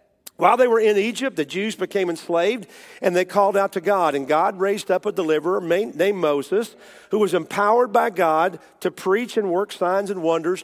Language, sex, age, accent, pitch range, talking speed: English, male, 50-69, American, 190-230 Hz, 200 wpm